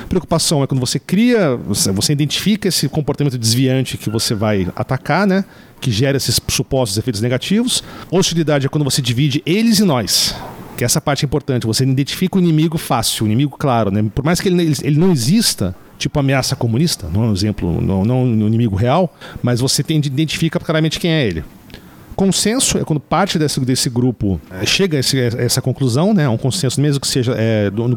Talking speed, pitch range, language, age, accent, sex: 195 wpm, 115-155 Hz, Portuguese, 50-69, Brazilian, male